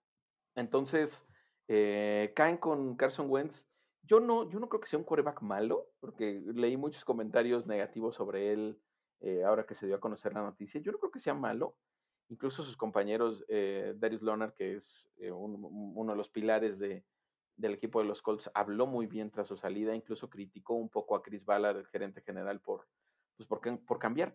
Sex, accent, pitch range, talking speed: male, Mexican, 105-130 Hz, 195 wpm